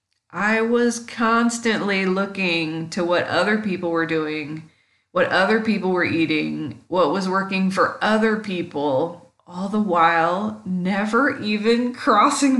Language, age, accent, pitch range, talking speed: English, 20-39, American, 175-215 Hz, 130 wpm